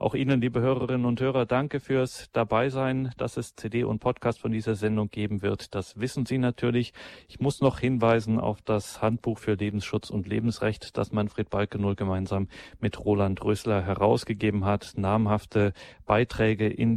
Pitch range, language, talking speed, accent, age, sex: 100-115 Hz, German, 165 wpm, German, 40-59, male